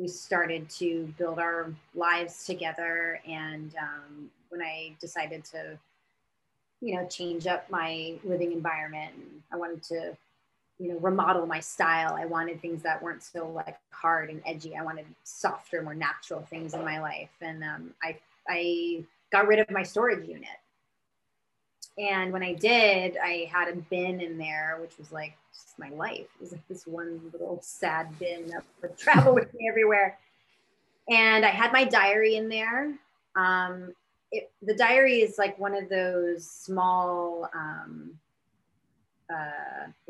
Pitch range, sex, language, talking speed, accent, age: 160-185 Hz, female, English, 160 wpm, American, 30-49